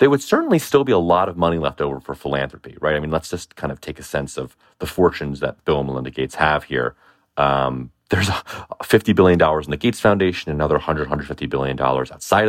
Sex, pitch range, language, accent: male, 75-105 Hz, English, American